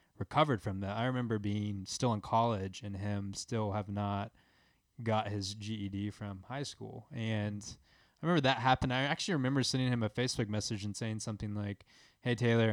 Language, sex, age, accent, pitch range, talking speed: English, male, 20-39, American, 100-120 Hz, 185 wpm